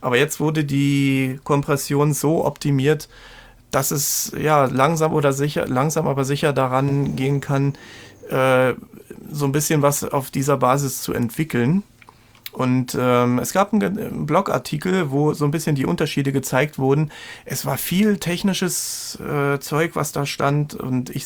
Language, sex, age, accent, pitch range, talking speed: German, male, 30-49, German, 130-155 Hz, 150 wpm